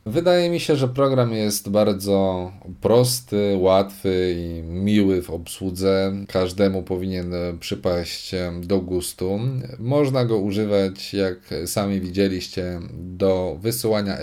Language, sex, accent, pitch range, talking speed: Polish, male, native, 95-125 Hz, 110 wpm